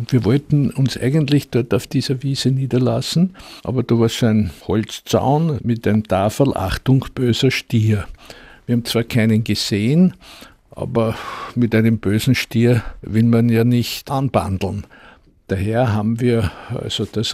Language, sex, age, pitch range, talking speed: German, male, 60-79, 110-135 Hz, 140 wpm